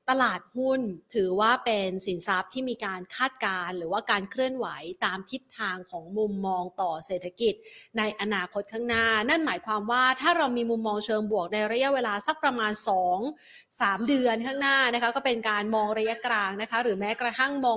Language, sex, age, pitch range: Thai, female, 30-49, 205-250 Hz